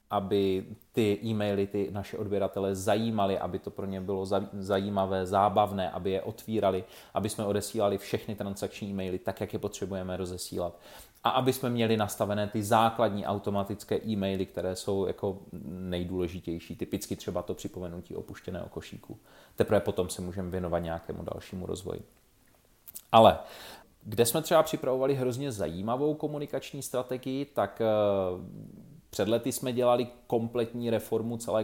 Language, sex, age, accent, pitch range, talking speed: Czech, male, 30-49, native, 100-125 Hz, 135 wpm